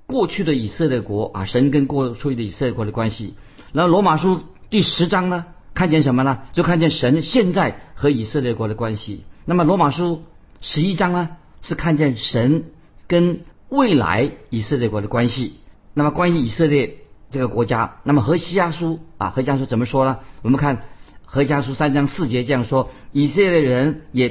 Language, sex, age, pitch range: Chinese, male, 50-69, 120-165 Hz